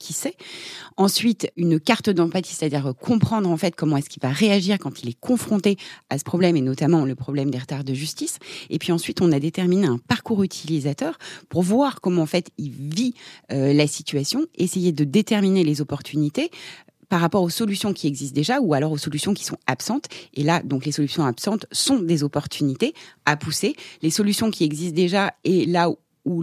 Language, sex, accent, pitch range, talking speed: French, female, French, 150-195 Hz, 200 wpm